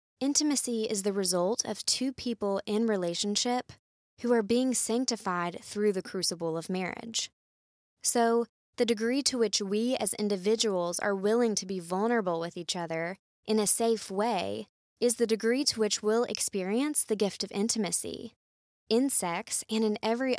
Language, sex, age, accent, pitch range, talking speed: English, female, 20-39, American, 185-235 Hz, 160 wpm